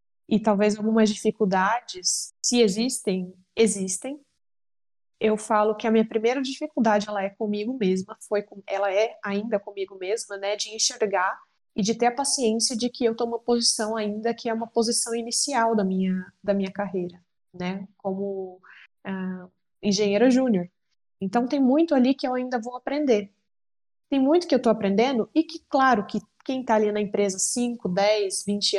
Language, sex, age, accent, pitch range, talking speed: Portuguese, female, 20-39, Brazilian, 210-260 Hz, 170 wpm